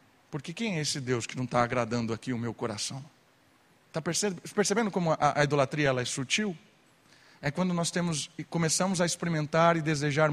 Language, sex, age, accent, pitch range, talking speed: Portuguese, male, 40-59, Brazilian, 140-185 Hz, 190 wpm